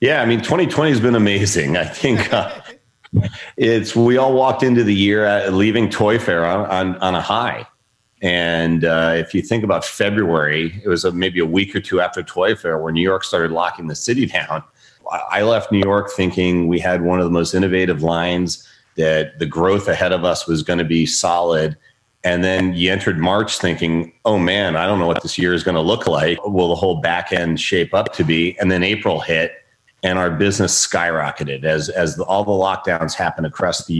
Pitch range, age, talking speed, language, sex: 85-100 Hz, 40-59, 215 wpm, English, male